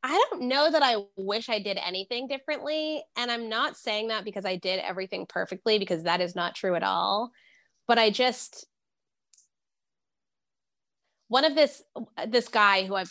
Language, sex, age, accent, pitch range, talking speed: English, female, 20-39, American, 185-225 Hz, 170 wpm